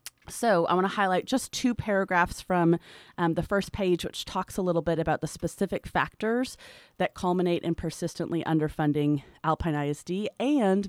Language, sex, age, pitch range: English, female, 30-49, 155-200 Hz